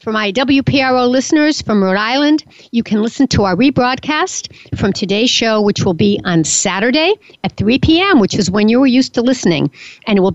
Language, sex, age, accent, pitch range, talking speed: English, female, 60-79, American, 185-260 Hz, 205 wpm